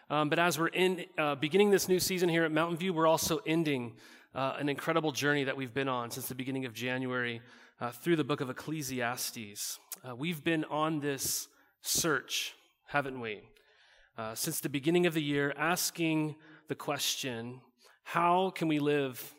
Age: 30-49